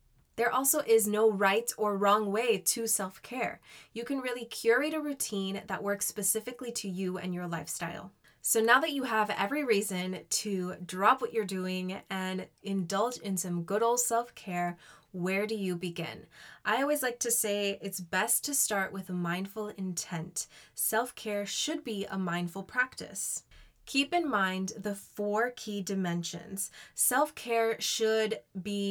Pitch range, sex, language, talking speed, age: 185-225 Hz, female, English, 160 wpm, 20-39